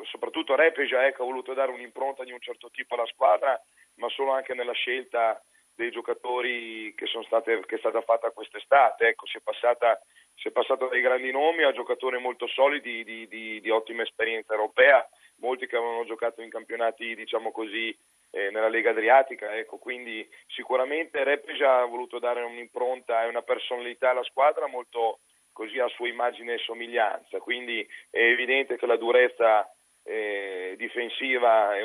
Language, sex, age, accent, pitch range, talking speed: Italian, male, 30-49, native, 115-130 Hz, 170 wpm